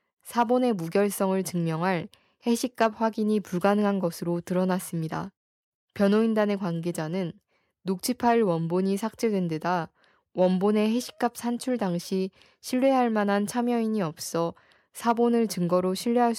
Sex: female